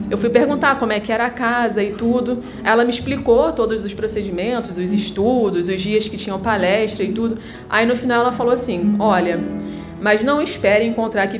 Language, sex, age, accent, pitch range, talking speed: Portuguese, female, 20-39, Brazilian, 205-250 Hz, 200 wpm